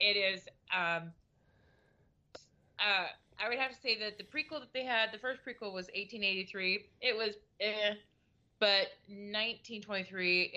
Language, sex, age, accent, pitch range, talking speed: English, female, 30-49, American, 170-205 Hz, 140 wpm